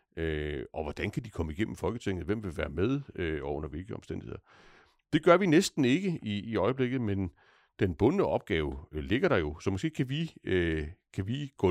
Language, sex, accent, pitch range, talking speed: Danish, male, native, 85-120 Hz, 210 wpm